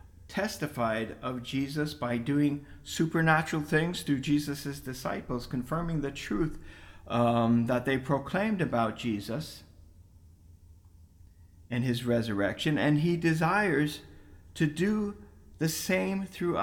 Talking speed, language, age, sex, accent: 110 wpm, English, 50-69, male, American